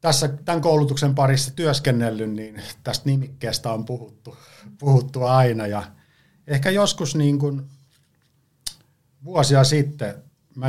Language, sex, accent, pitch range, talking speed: Finnish, male, native, 105-140 Hz, 110 wpm